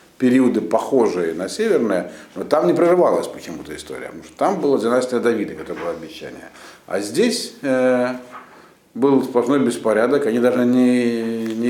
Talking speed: 150 wpm